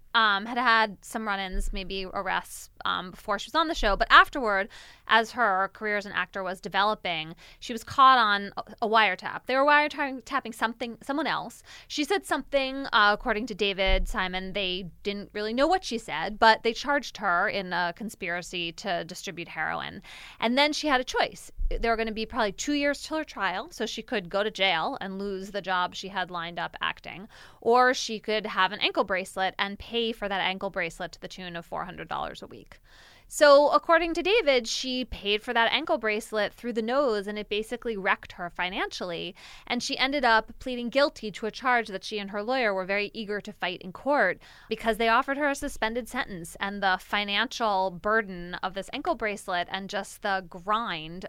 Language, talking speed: English, 200 wpm